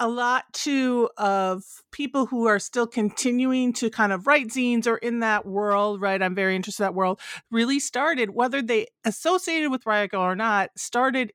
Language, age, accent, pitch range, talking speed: English, 40-59, American, 185-235 Hz, 185 wpm